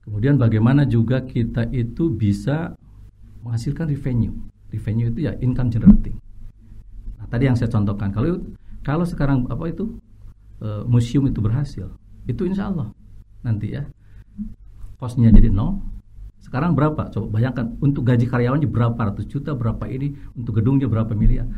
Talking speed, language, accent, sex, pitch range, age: 140 wpm, Indonesian, native, male, 105-140 Hz, 50-69